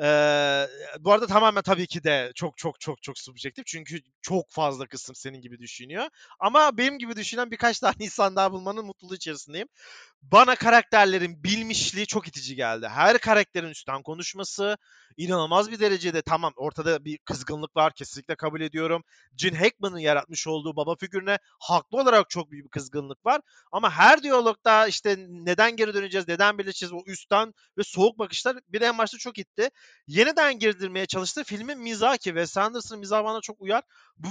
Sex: male